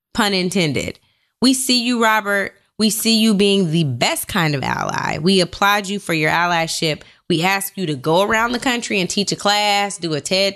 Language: English